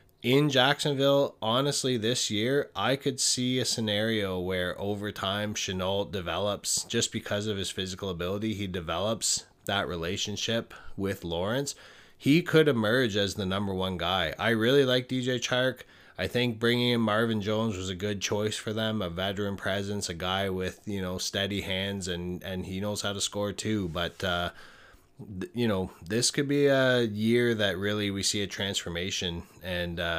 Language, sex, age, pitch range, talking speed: English, male, 20-39, 90-125 Hz, 170 wpm